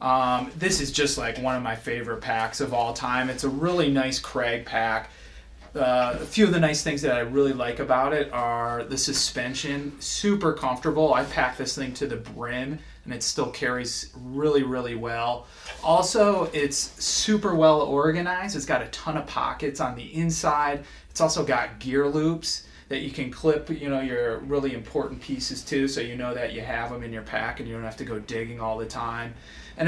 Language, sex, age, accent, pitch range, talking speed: English, male, 30-49, American, 120-150 Hz, 205 wpm